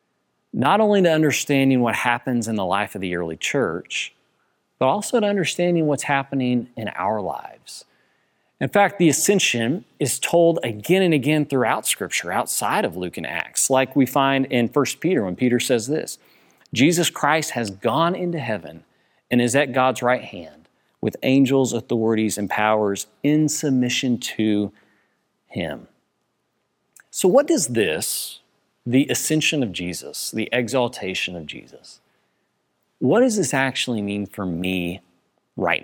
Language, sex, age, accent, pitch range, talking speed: English, male, 40-59, American, 110-150 Hz, 150 wpm